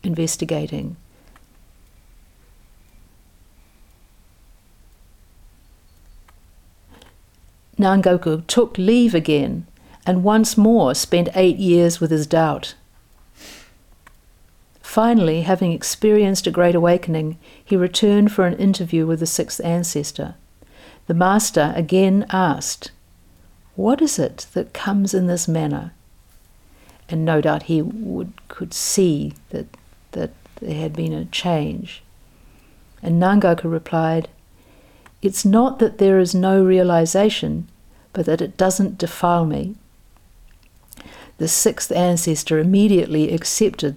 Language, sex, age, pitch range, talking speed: English, female, 60-79, 150-195 Hz, 105 wpm